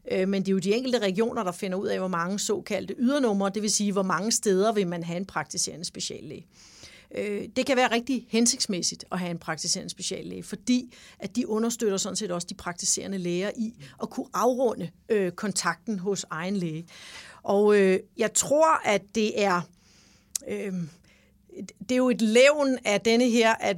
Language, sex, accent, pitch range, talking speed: English, female, Danish, 185-225 Hz, 170 wpm